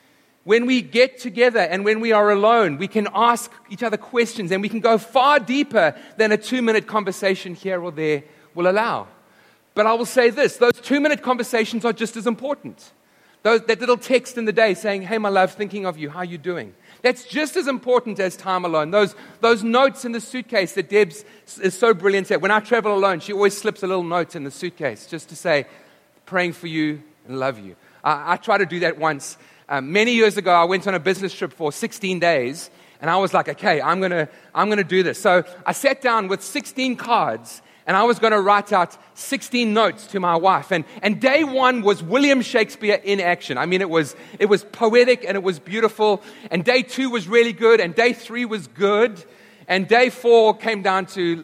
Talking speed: 220 wpm